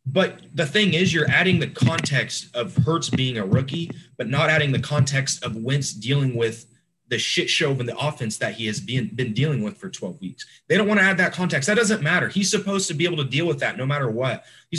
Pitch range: 130-180 Hz